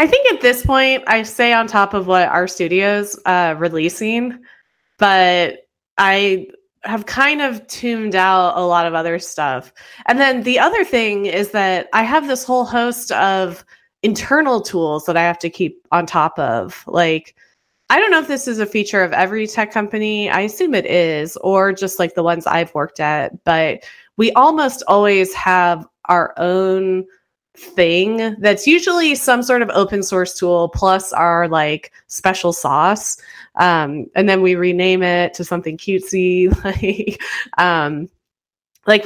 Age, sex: 20-39, female